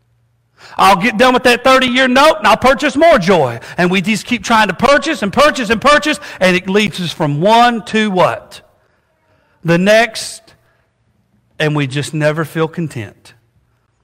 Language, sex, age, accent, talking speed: English, male, 40-59, American, 165 wpm